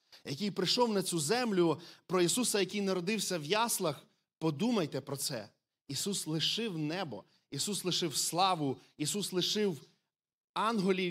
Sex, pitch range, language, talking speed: male, 135-175 Hz, Ukrainian, 125 wpm